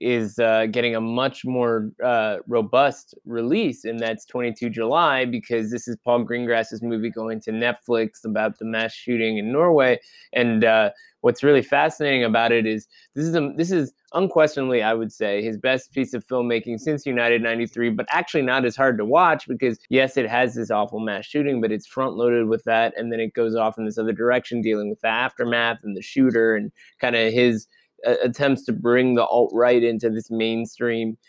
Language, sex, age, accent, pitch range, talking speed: English, male, 20-39, American, 115-135 Hz, 195 wpm